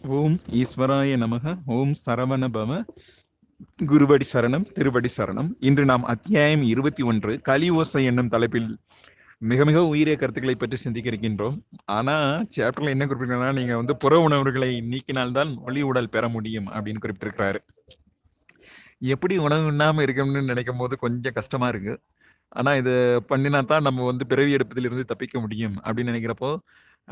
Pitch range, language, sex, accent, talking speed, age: 120-145 Hz, Tamil, male, native, 125 wpm, 30-49